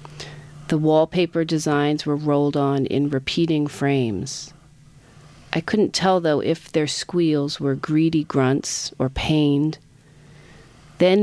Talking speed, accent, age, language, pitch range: 120 wpm, American, 40-59, English, 140-160 Hz